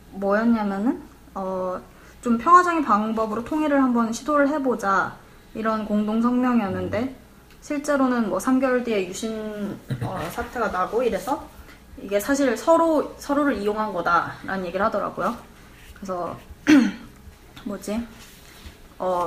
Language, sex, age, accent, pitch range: Korean, female, 20-39, native, 200-260 Hz